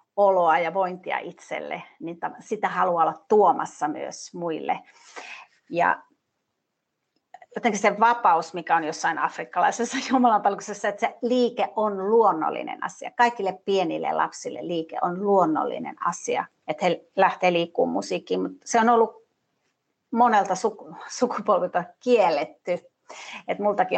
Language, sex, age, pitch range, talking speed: Finnish, female, 30-49, 175-210 Hz, 120 wpm